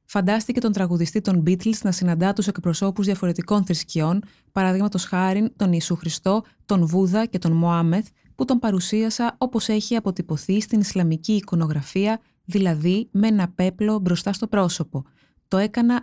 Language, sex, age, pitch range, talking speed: Greek, female, 20-39, 170-215 Hz, 145 wpm